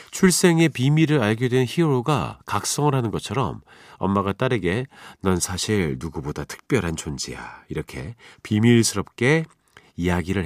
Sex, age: male, 40-59